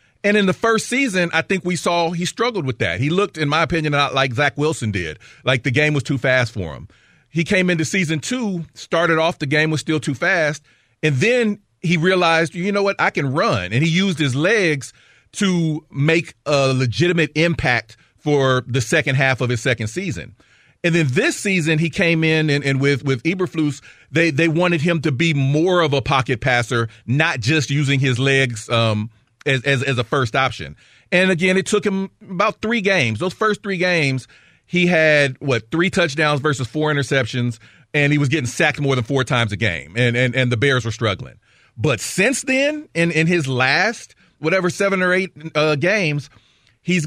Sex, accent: male, American